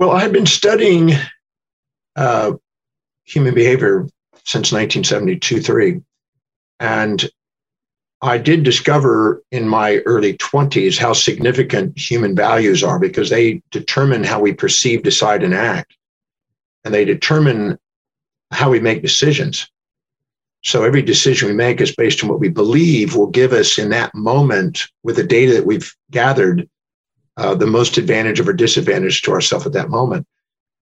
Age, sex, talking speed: 50-69, male, 140 wpm